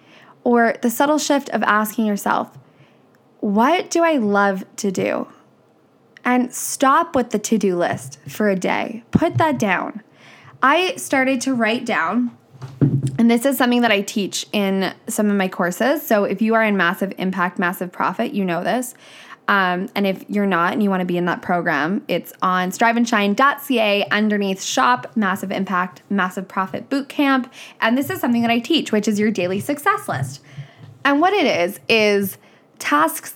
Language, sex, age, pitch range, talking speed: English, female, 10-29, 190-245 Hz, 175 wpm